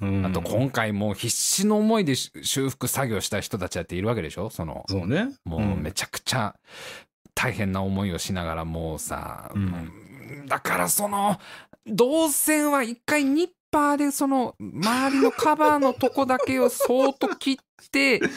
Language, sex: Japanese, male